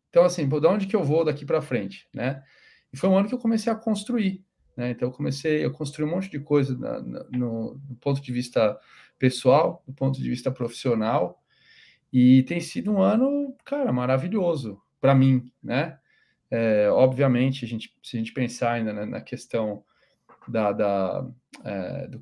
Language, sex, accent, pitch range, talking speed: Portuguese, male, Brazilian, 120-145 Hz, 160 wpm